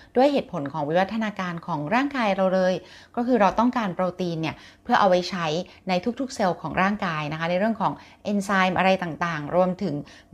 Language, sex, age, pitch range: Thai, female, 20-39, 165-205 Hz